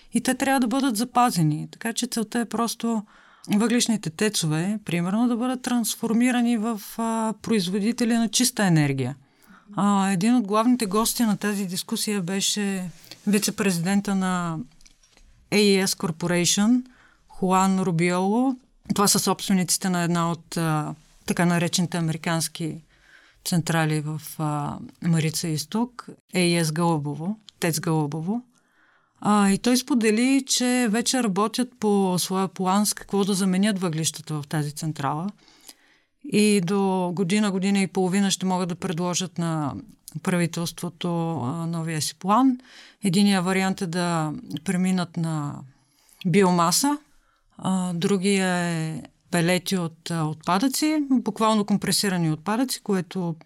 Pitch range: 170-220 Hz